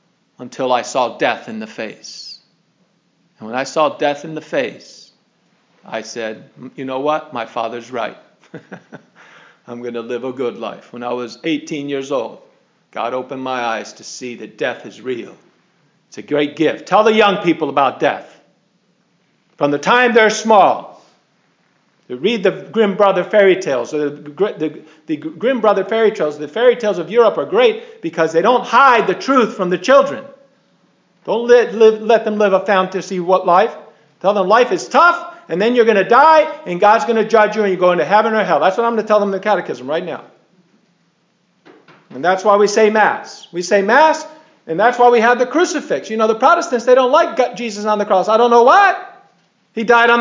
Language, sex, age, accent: English, male, 50-69, American